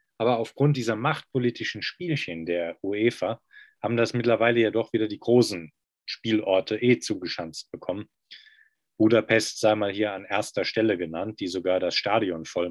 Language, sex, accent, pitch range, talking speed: German, male, German, 95-120 Hz, 150 wpm